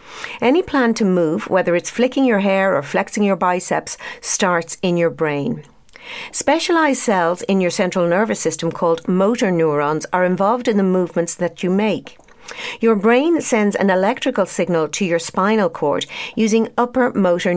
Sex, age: female, 60-79